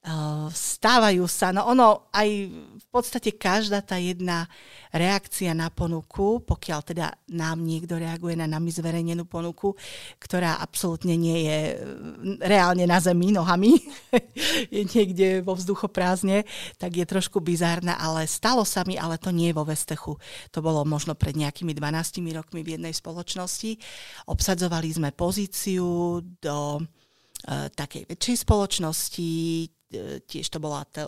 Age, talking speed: 40-59, 135 wpm